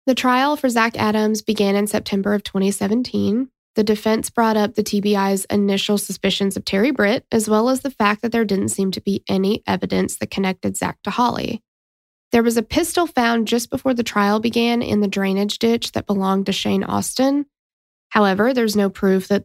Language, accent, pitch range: English, American, 200-235 Hz